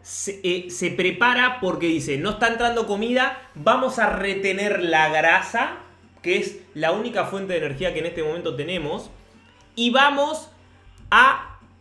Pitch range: 155-215 Hz